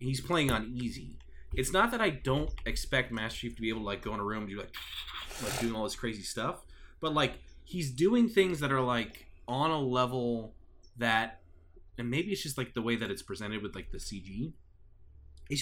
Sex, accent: male, American